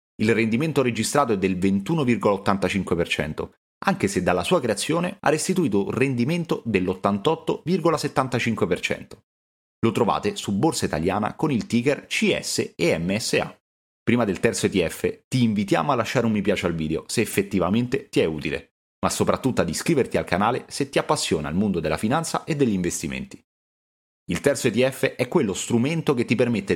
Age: 30-49